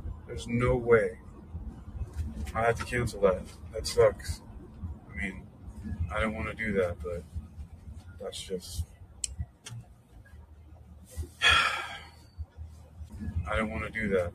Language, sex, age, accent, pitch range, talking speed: English, male, 30-49, American, 80-105 Hz, 105 wpm